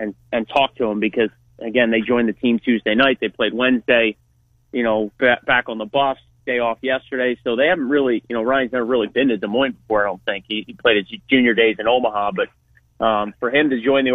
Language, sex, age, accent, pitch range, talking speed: English, male, 30-49, American, 120-140 Hz, 240 wpm